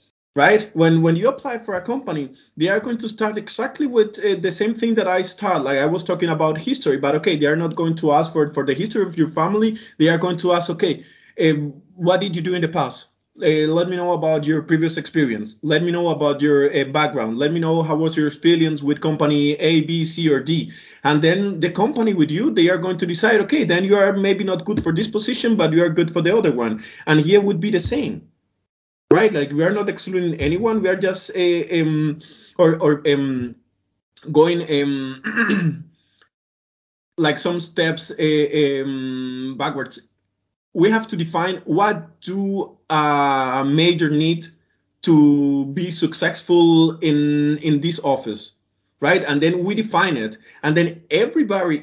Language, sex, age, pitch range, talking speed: English, male, 30-49, 150-185 Hz, 195 wpm